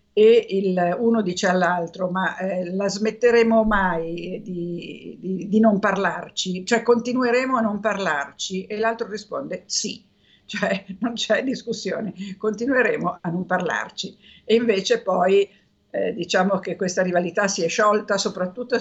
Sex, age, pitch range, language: female, 50-69, 175-210 Hz, Italian